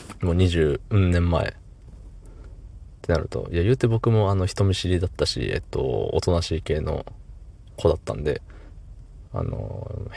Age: 20-39